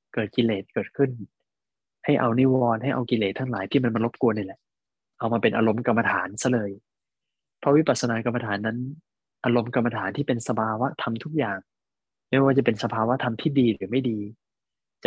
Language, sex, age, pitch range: Thai, male, 20-39, 105-125 Hz